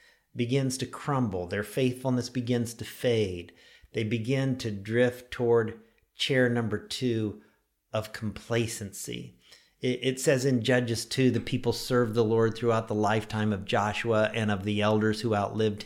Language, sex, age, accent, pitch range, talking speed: English, male, 50-69, American, 110-140 Hz, 150 wpm